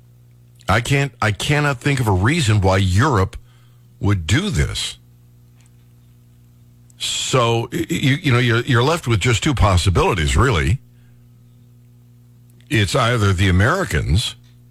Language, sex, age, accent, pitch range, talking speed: English, male, 60-79, American, 105-130 Hz, 120 wpm